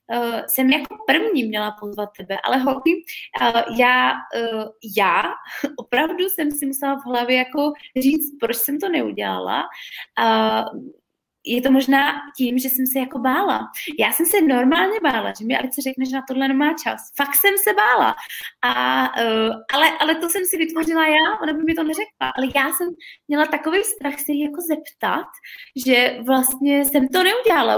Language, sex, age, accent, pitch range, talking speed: Czech, female, 20-39, native, 245-310 Hz, 175 wpm